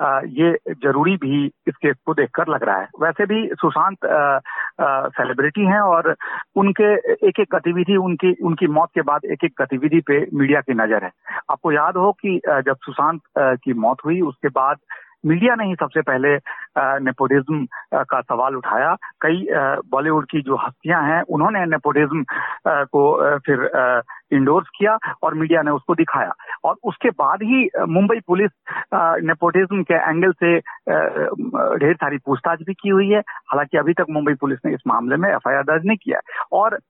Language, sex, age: Hindi, male, 50-69